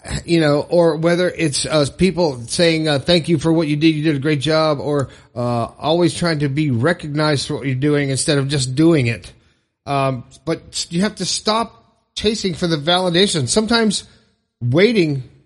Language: English